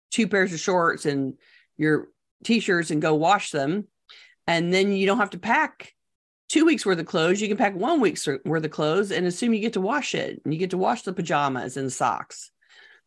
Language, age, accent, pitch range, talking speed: English, 40-59, American, 155-205 Hz, 215 wpm